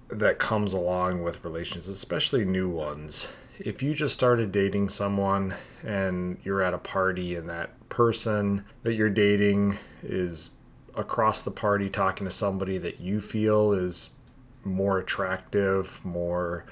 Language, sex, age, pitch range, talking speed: English, male, 30-49, 90-110 Hz, 140 wpm